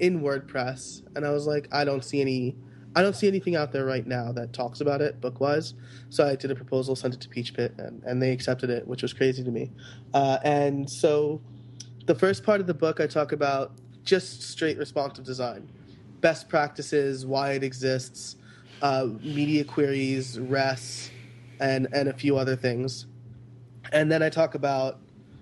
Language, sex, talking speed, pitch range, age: English, male, 190 wpm, 125-150 Hz, 20-39